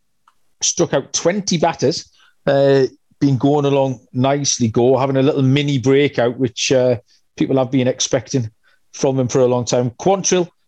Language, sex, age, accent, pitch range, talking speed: English, male, 40-59, British, 135-180 Hz, 155 wpm